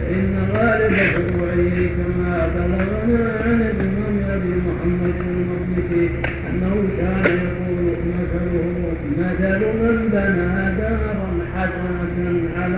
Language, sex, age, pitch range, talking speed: Arabic, male, 50-69, 170-195 Hz, 100 wpm